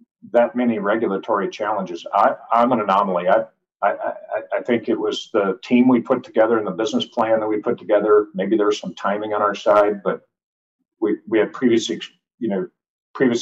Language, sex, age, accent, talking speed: English, male, 50-69, American, 190 wpm